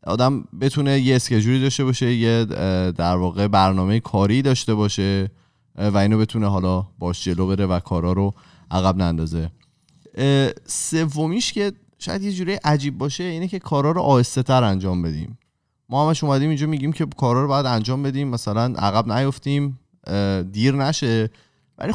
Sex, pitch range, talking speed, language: male, 105-150 Hz, 150 wpm, Persian